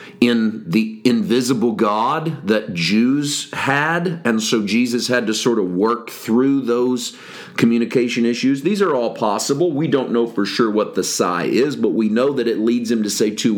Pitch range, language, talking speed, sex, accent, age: 115-155 Hz, English, 185 wpm, male, American, 40-59